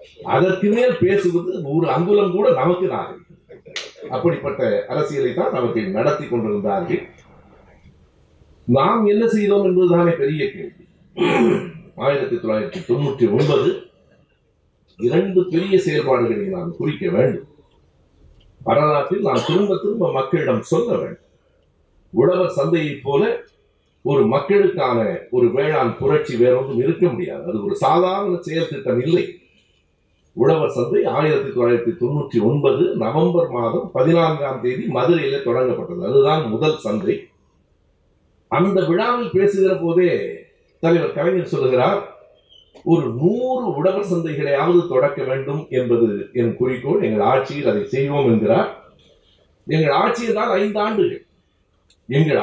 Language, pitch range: Tamil, 135-205 Hz